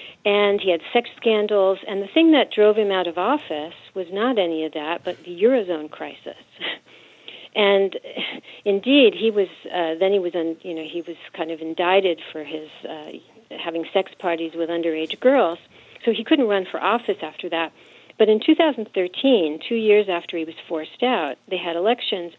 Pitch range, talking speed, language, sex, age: 165-220 Hz, 190 wpm, English, female, 50-69